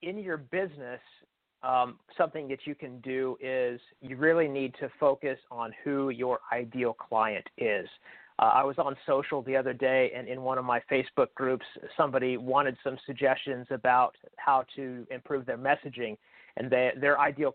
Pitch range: 130-150 Hz